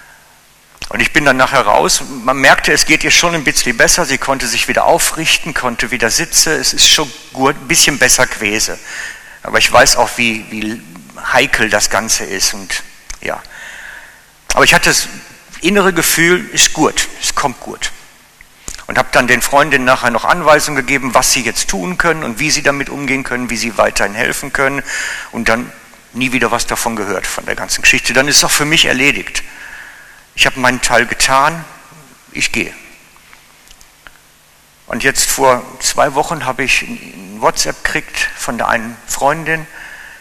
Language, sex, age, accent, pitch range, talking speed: German, male, 50-69, German, 115-145 Hz, 175 wpm